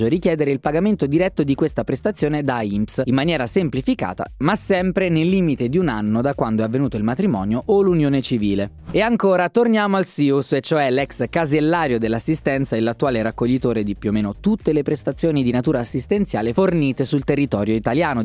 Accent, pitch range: native, 125-185 Hz